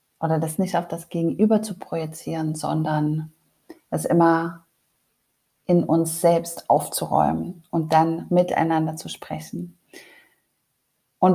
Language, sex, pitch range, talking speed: German, female, 170-195 Hz, 110 wpm